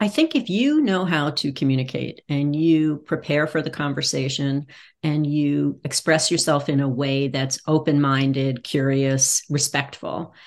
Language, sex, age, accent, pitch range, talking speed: English, female, 40-59, American, 140-170 Hz, 150 wpm